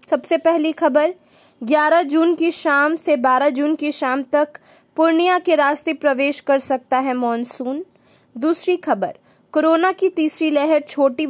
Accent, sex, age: native, female, 20-39